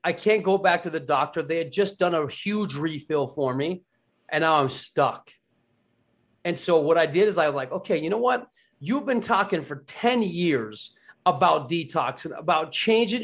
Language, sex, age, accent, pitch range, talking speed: English, male, 30-49, American, 145-190 Hz, 200 wpm